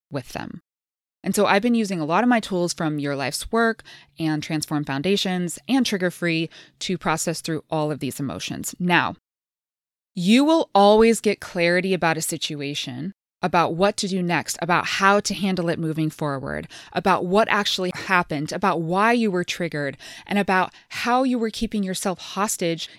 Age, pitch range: 20-39, 160-205 Hz